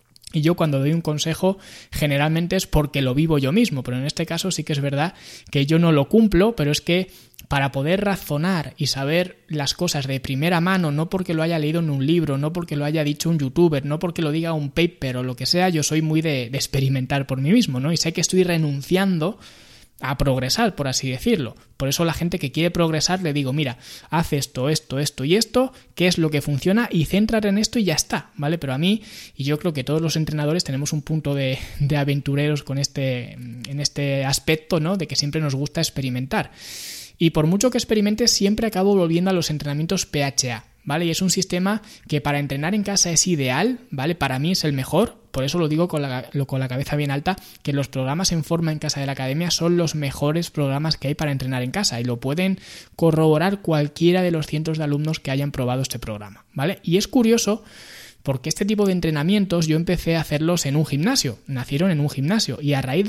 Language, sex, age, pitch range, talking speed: Spanish, male, 20-39, 140-180 Hz, 225 wpm